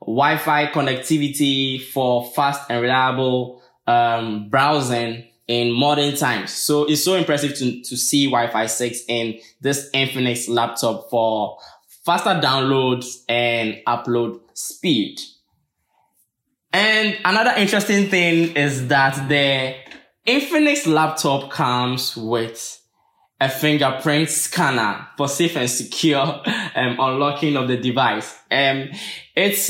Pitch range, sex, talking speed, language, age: 120-160 Hz, male, 110 wpm, English, 10-29